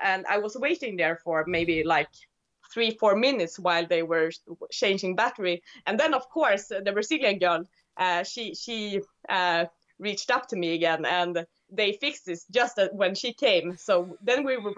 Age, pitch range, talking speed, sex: 20-39, 170-215 Hz, 180 wpm, female